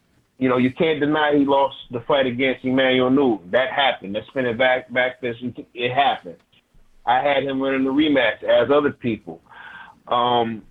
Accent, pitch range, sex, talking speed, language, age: American, 130-165 Hz, male, 180 wpm, English, 30-49